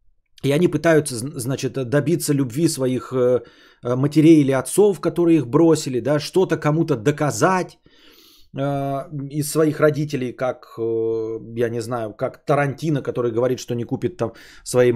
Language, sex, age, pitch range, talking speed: English, male, 20-39, 125-190 Hz, 140 wpm